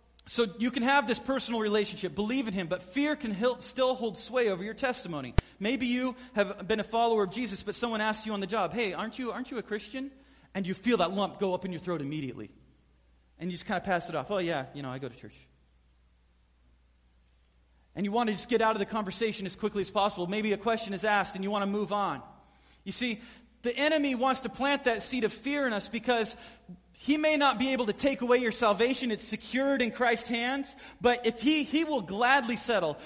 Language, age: English, 40-59